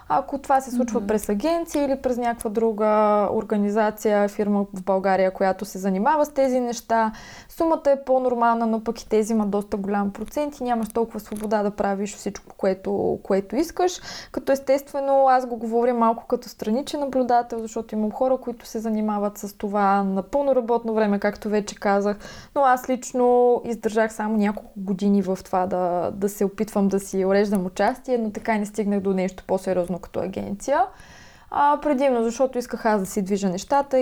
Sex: female